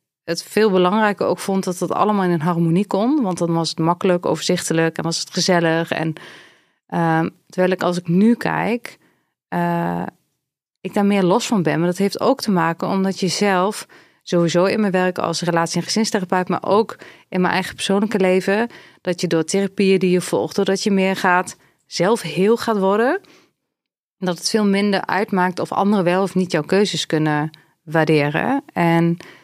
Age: 30-49